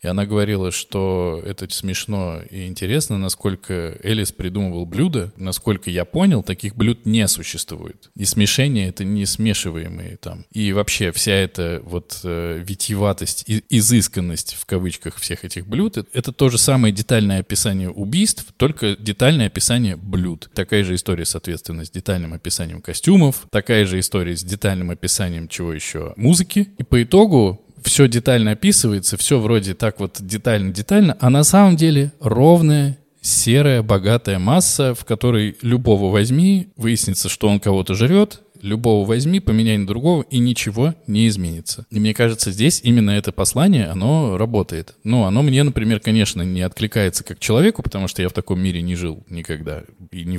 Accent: native